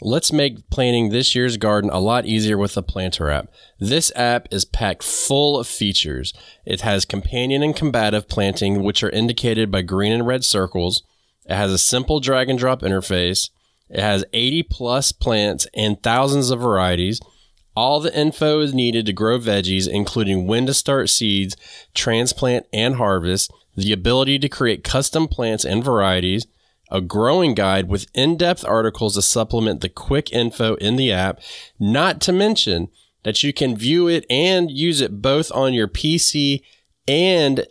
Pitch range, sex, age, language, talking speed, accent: 100-130 Hz, male, 20-39, English, 165 wpm, American